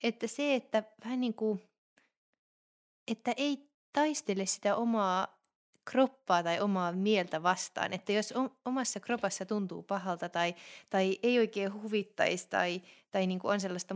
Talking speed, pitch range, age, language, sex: 140 wpm, 175-220 Hz, 30-49, Finnish, female